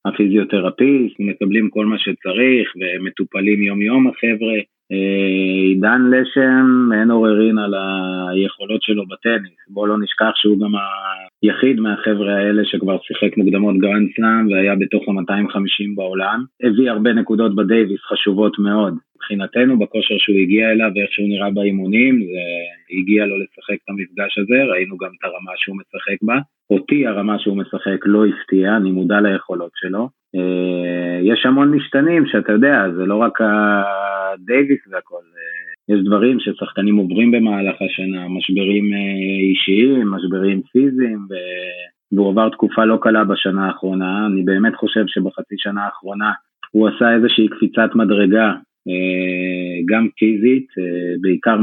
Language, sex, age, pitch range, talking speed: Hebrew, male, 20-39, 95-110 Hz, 130 wpm